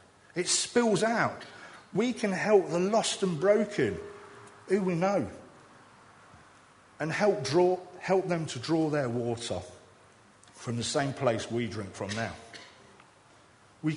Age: 40-59